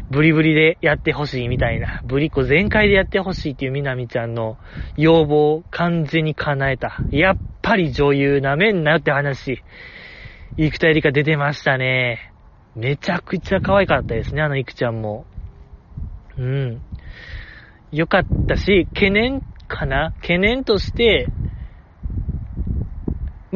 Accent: native